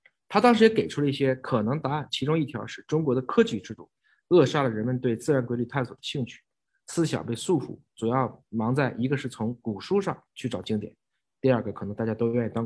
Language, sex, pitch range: Chinese, male, 110-135 Hz